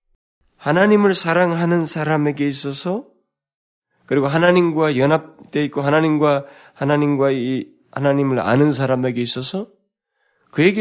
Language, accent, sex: Korean, native, male